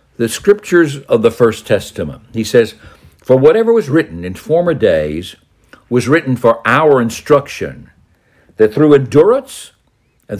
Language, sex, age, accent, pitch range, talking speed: English, male, 60-79, American, 110-160 Hz, 140 wpm